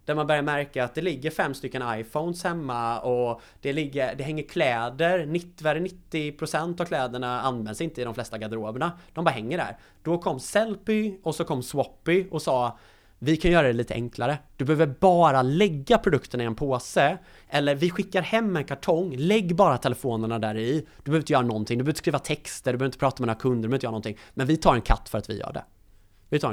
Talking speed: 225 wpm